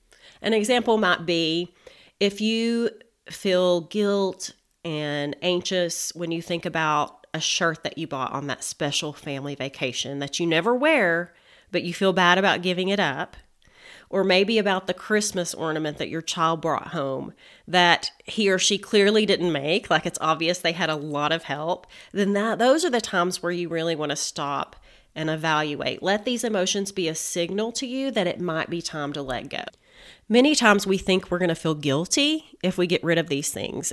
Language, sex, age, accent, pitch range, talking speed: English, female, 30-49, American, 155-200 Hz, 195 wpm